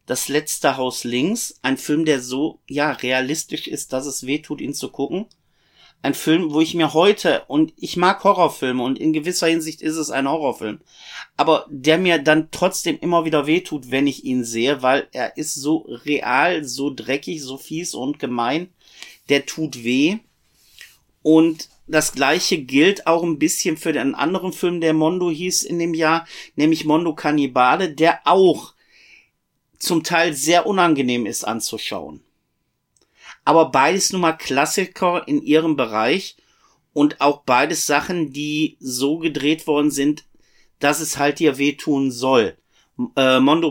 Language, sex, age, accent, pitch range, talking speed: German, male, 50-69, German, 140-165 Hz, 155 wpm